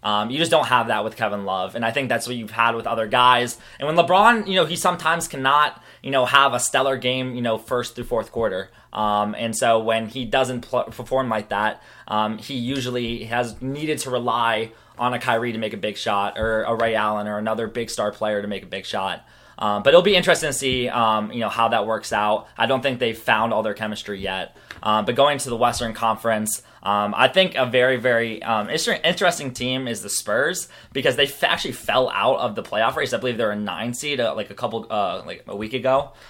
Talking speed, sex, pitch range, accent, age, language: 240 wpm, male, 110-130 Hz, American, 20-39, English